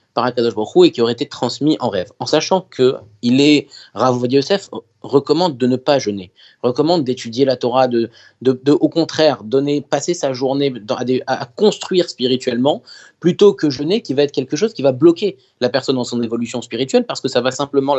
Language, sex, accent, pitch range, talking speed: French, male, French, 120-155 Hz, 195 wpm